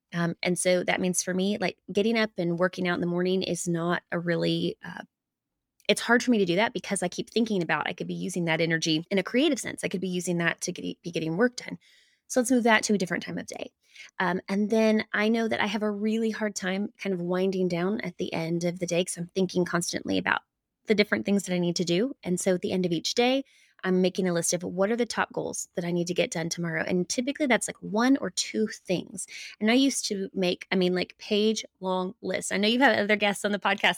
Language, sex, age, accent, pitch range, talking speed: English, female, 20-39, American, 175-215 Hz, 270 wpm